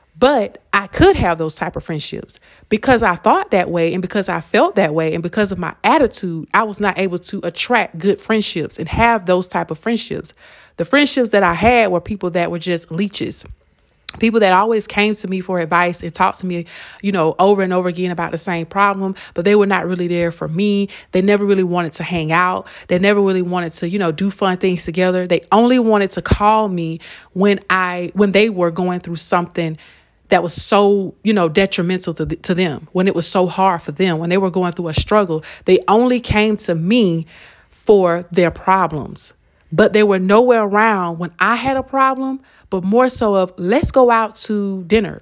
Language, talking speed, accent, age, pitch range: English, 210 wpm, American, 30-49, 175-205 Hz